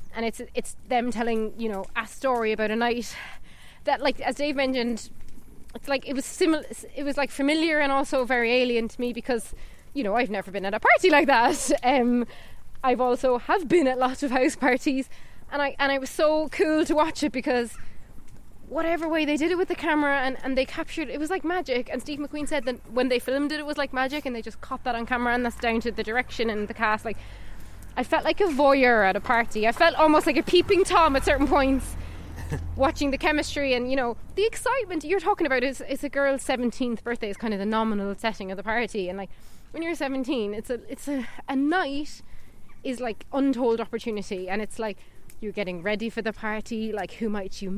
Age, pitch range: 20-39, 230-290 Hz